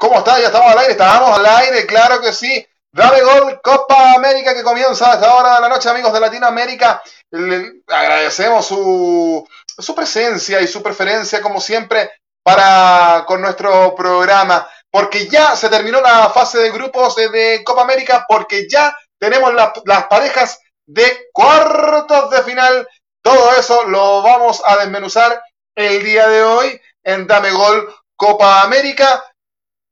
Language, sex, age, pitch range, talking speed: Spanish, male, 30-49, 205-260 Hz, 155 wpm